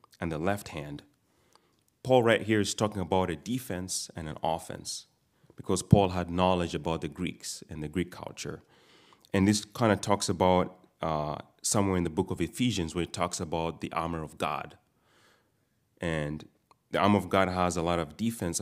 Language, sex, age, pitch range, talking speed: English, male, 30-49, 85-105 Hz, 185 wpm